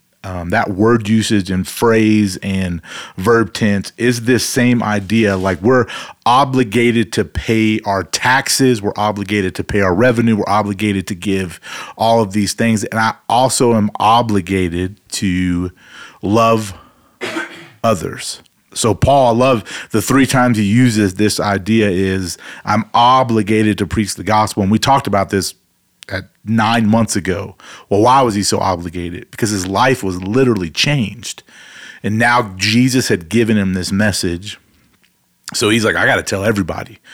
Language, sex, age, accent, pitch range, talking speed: English, male, 40-59, American, 95-115 Hz, 155 wpm